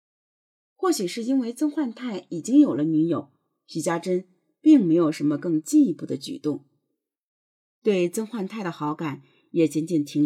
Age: 30-49